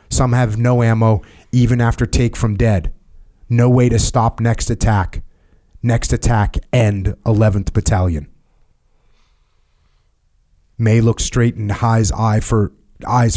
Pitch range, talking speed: 95-115 Hz, 125 wpm